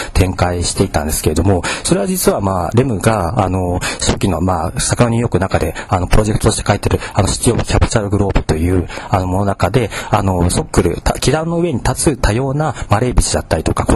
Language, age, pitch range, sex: Japanese, 40-59, 95-125 Hz, male